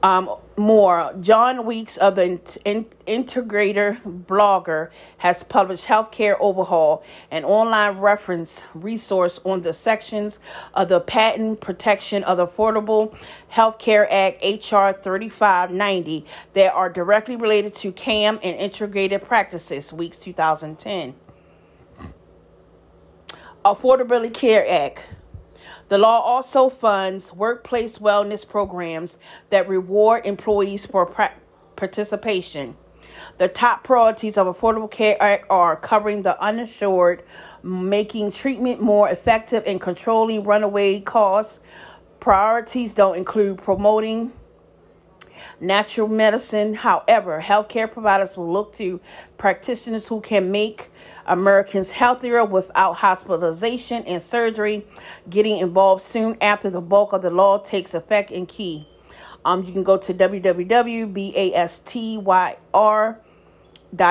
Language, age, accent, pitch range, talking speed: English, 40-59, American, 185-220 Hz, 110 wpm